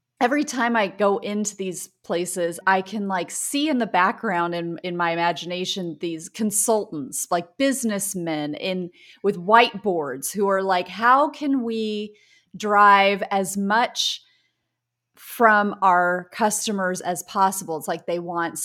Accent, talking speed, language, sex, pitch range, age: American, 140 wpm, English, female, 180-225 Hz, 30-49